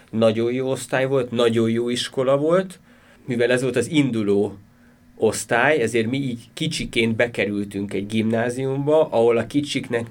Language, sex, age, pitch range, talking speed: Hungarian, male, 30-49, 105-135 Hz, 135 wpm